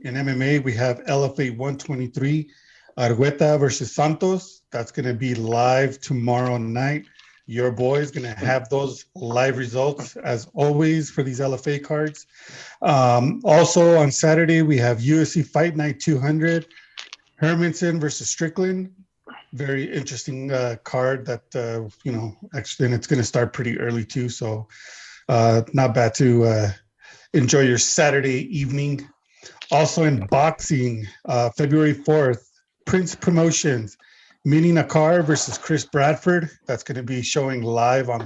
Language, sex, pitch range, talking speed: English, male, 125-150 Hz, 135 wpm